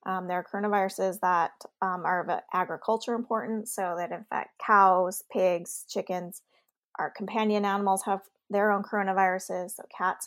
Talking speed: 145 wpm